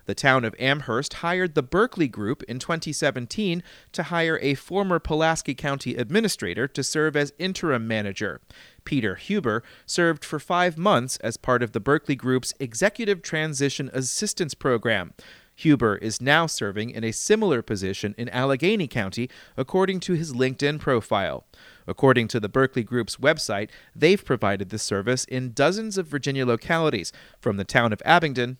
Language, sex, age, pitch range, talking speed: English, male, 30-49, 120-170 Hz, 155 wpm